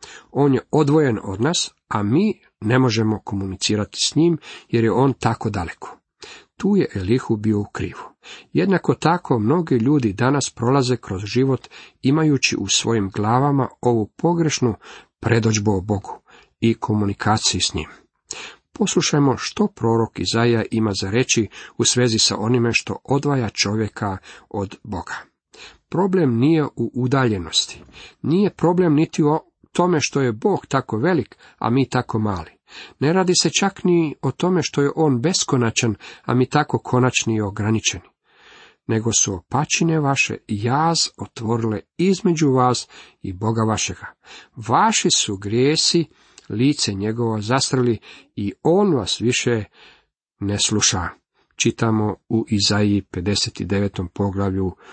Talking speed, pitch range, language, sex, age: 135 wpm, 105-150 Hz, Croatian, male, 50-69